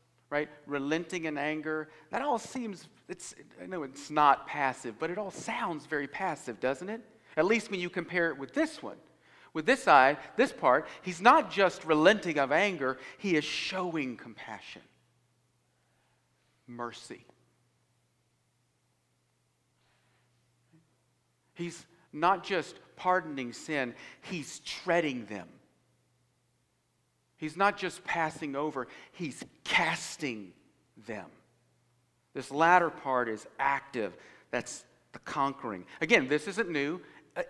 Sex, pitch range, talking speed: male, 135-175 Hz, 120 wpm